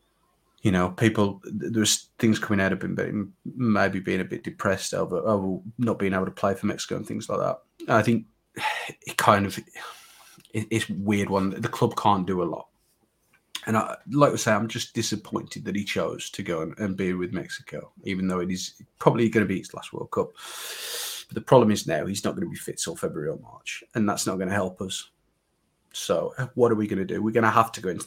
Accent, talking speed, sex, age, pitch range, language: British, 235 wpm, male, 30-49, 100-120 Hz, English